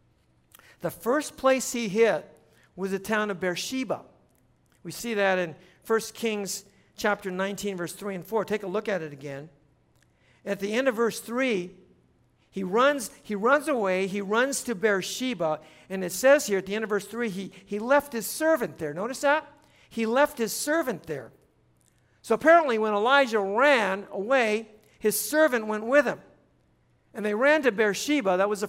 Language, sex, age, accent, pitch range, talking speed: English, male, 50-69, American, 185-240 Hz, 180 wpm